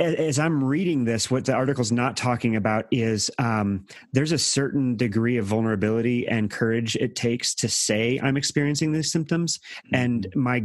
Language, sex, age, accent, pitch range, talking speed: English, male, 30-49, American, 115-135 Hz, 175 wpm